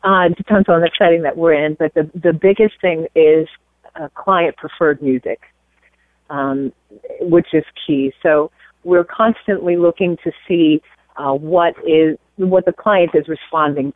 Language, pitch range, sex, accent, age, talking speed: English, 145-170 Hz, female, American, 40-59, 155 wpm